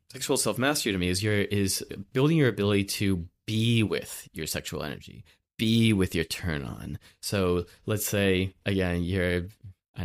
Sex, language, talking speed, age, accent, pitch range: male, English, 155 wpm, 20-39, American, 95-120 Hz